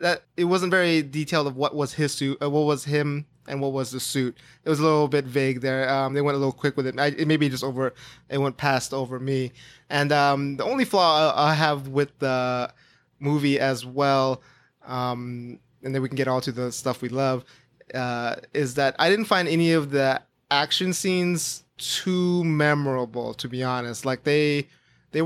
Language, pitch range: English, 130-165 Hz